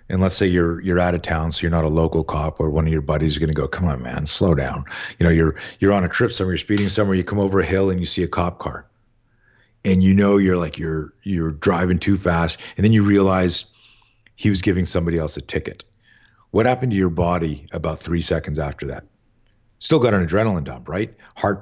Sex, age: male, 40-59